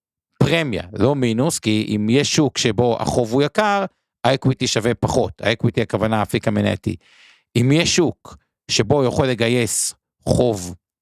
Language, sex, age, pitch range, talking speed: Hebrew, male, 50-69, 110-145 Hz, 140 wpm